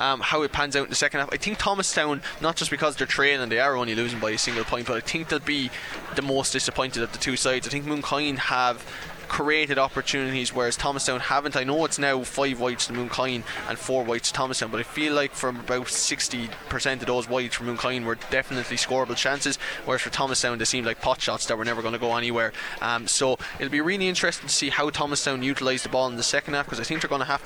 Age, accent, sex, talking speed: 20-39, Irish, male, 250 wpm